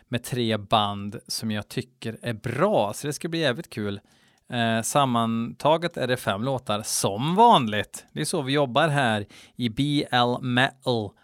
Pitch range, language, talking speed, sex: 115-140 Hz, Swedish, 160 wpm, male